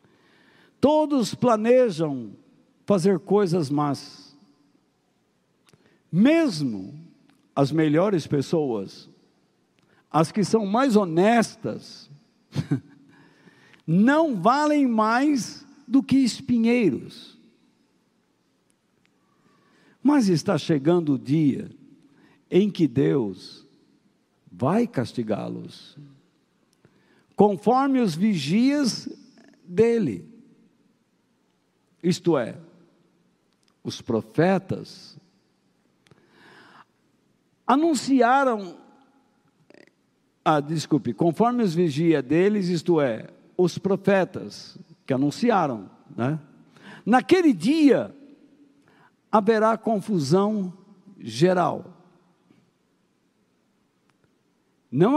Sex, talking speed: male, 65 wpm